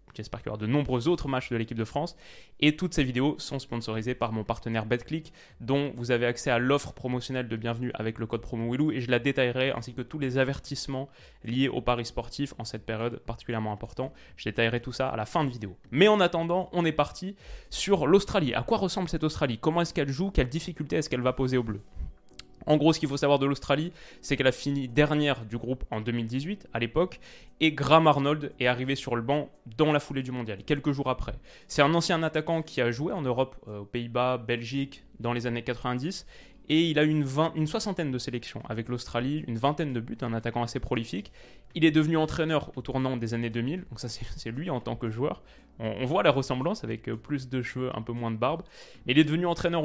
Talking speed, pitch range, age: 235 wpm, 115-150 Hz, 20-39